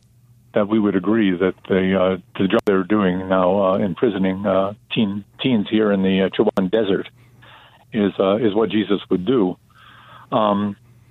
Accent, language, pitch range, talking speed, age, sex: American, English, 100-120 Hz, 160 wpm, 50-69, male